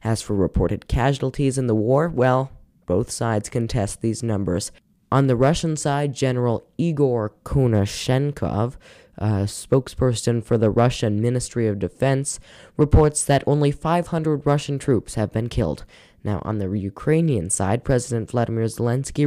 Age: 10-29